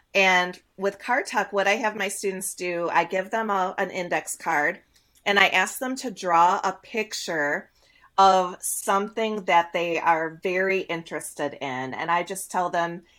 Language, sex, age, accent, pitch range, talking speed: English, female, 30-49, American, 170-205 Hz, 170 wpm